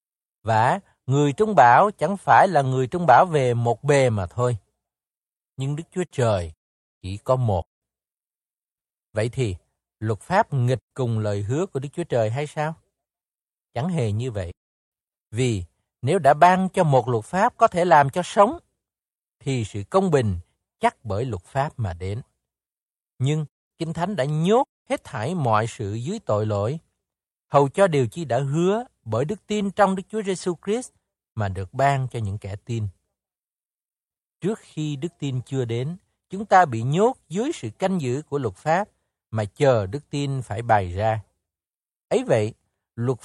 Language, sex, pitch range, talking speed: Vietnamese, male, 110-175 Hz, 170 wpm